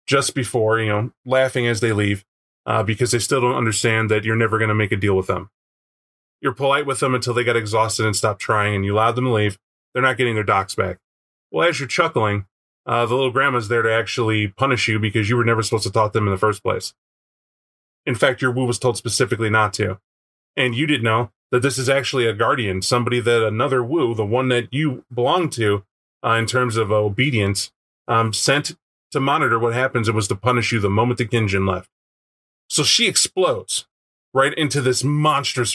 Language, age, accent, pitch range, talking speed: English, 20-39, American, 110-135 Hz, 220 wpm